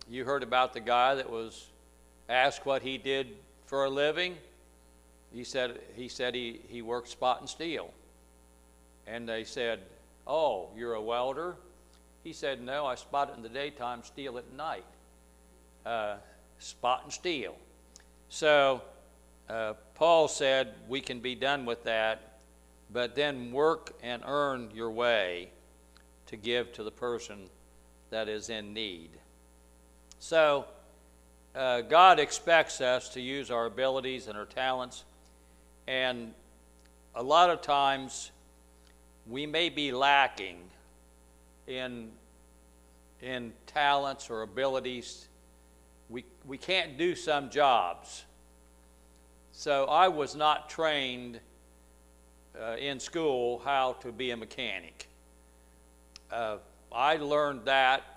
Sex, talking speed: male, 125 wpm